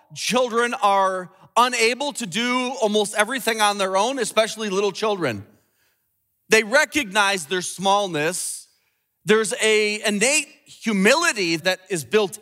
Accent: American